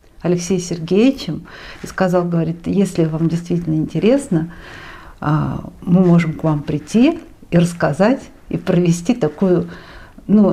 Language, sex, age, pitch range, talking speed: Russian, female, 50-69, 160-195 Hz, 115 wpm